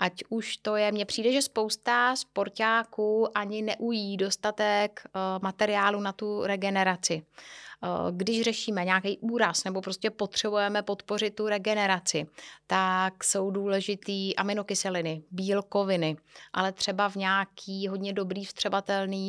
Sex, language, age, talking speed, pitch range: female, Czech, 30-49, 120 wpm, 190-215 Hz